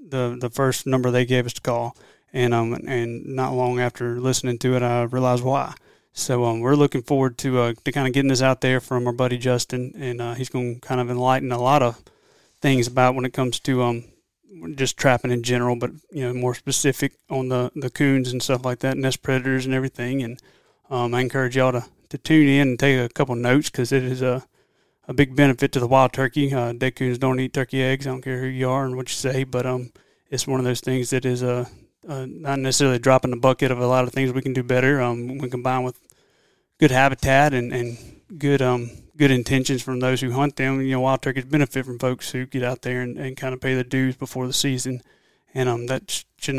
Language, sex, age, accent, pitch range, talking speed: English, male, 30-49, American, 125-135 Hz, 240 wpm